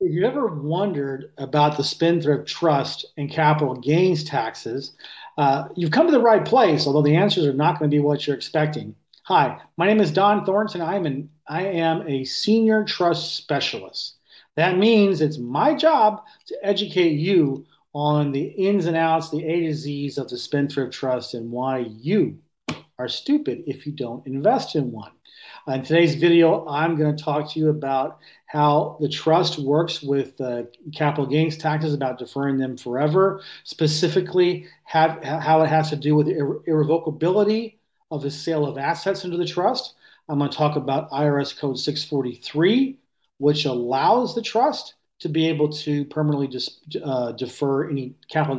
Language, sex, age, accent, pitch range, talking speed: English, male, 40-59, American, 140-175 Hz, 170 wpm